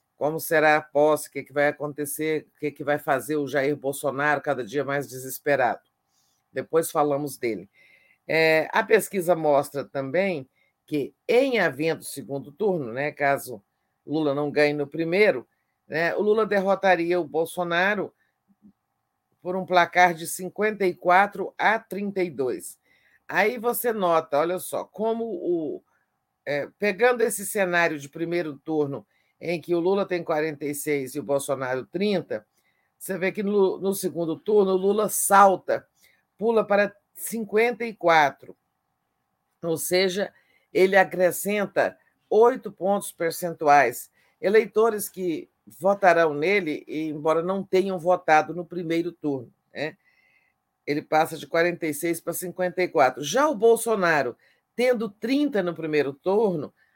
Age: 50-69